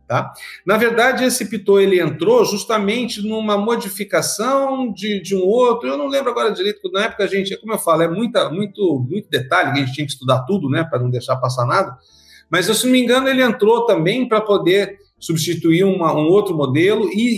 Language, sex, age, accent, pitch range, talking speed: Portuguese, male, 50-69, Brazilian, 150-230 Hz, 205 wpm